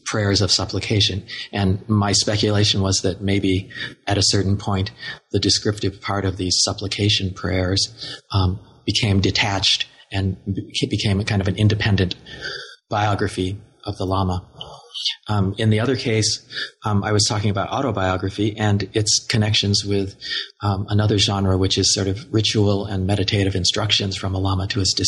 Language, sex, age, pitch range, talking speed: English, male, 40-59, 100-110 Hz, 155 wpm